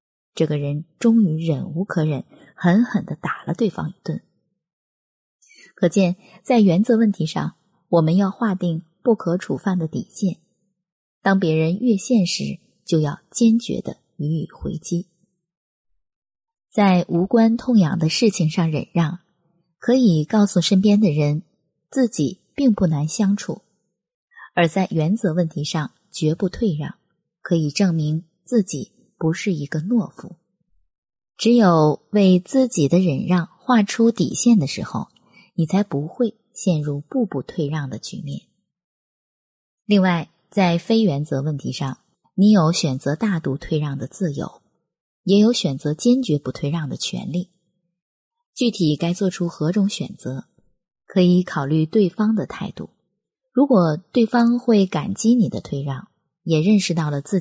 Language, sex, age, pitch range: Chinese, female, 20-39, 160-210 Hz